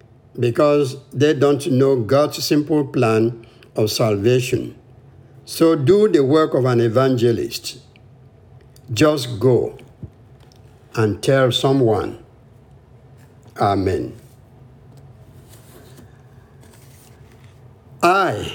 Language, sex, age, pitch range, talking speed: English, male, 60-79, 120-145 Hz, 75 wpm